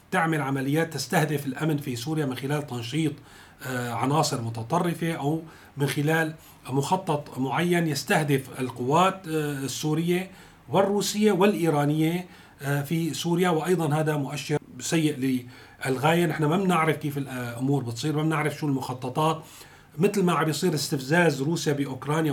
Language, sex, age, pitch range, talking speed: Arabic, male, 40-59, 140-170 Hz, 115 wpm